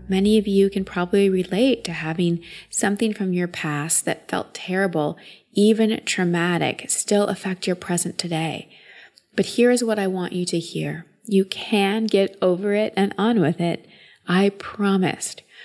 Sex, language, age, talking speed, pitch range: female, English, 30-49, 160 wpm, 175-210 Hz